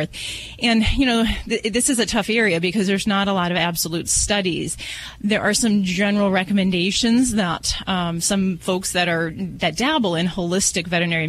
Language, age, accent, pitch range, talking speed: English, 30-49, American, 170-205 Hz, 175 wpm